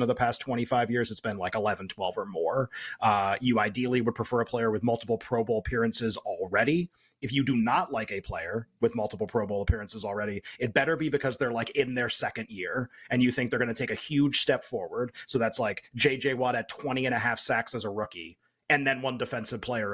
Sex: male